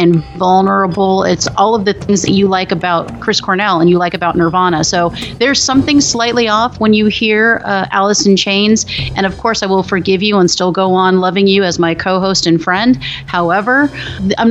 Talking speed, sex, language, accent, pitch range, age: 205 wpm, female, English, American, 170-210 Hz, 30-49